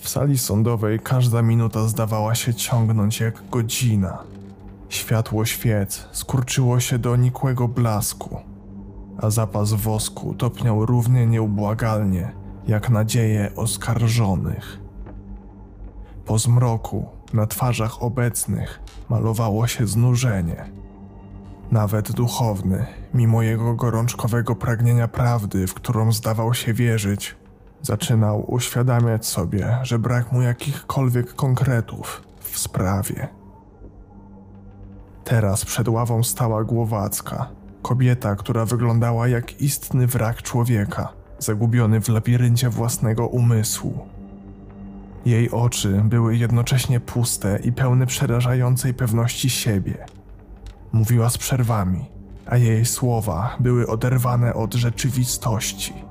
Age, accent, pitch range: 20-39, native, 100-120 Hz